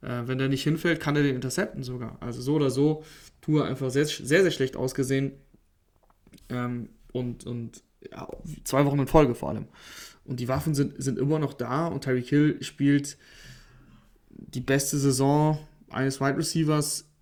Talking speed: 165 wpm